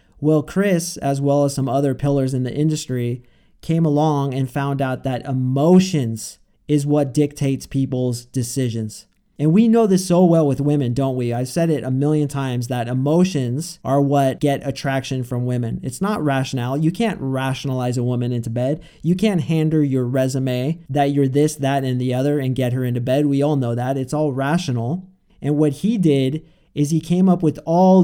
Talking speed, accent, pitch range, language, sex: 195 wpm, American, 130-155 Hz, English, male